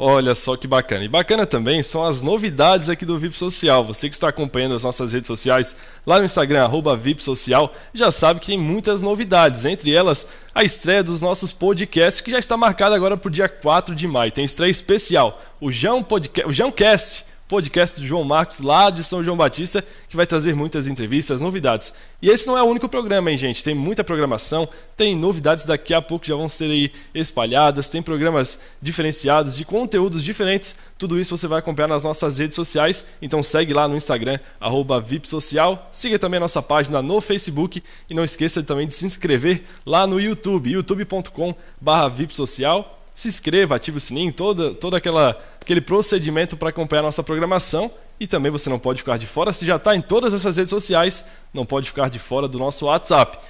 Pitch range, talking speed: 150-190 Hz, 195 wpm